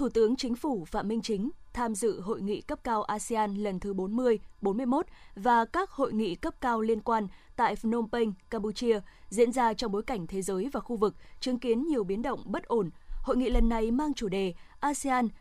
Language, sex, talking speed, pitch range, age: Vietnamese, female, 215 wpm, 215-260 Hz, 20-39